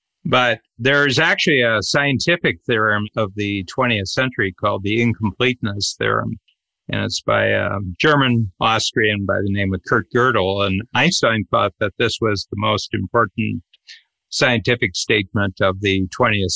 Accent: American